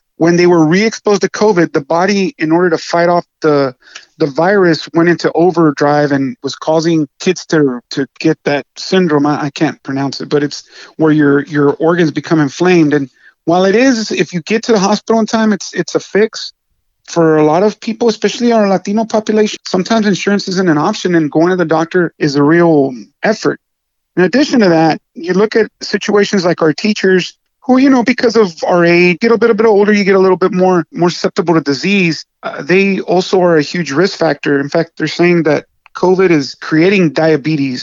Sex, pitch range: male, 155-190 Hz